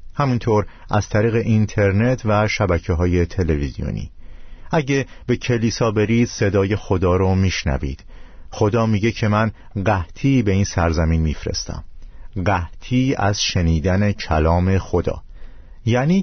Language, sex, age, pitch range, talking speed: Persian, male, 50-69, 85-110 Hz, 115 wpm